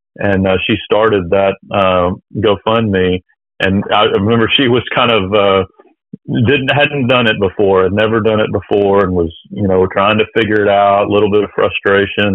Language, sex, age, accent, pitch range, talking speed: English, male, 40-59, American, 95-105 Hz, 190 wpm